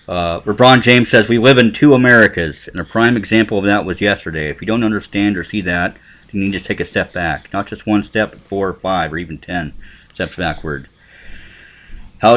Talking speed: 225 wpm